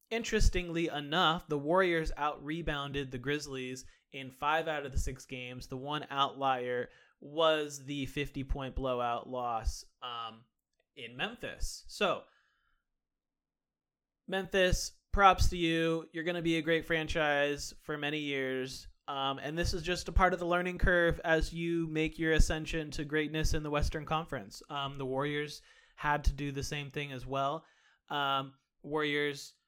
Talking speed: 150 wpm